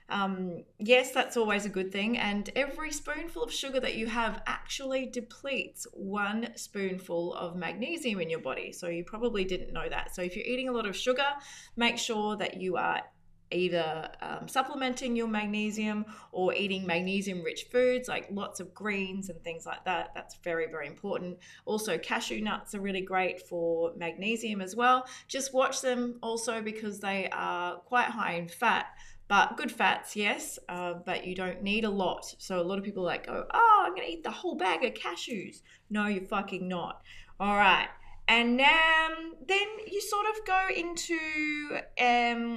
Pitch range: 185-250 Hz